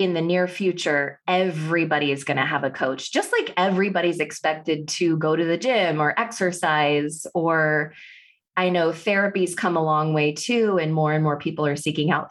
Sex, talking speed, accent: female, 190 wpm, American